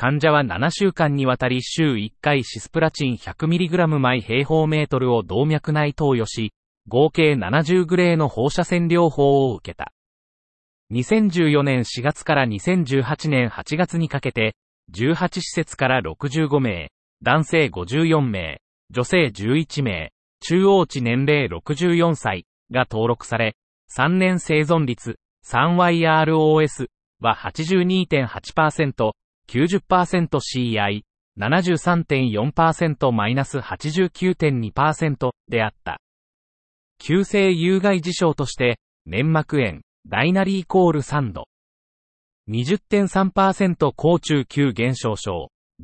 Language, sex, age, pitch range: Japanese, male, 40-59, 120-165 Hz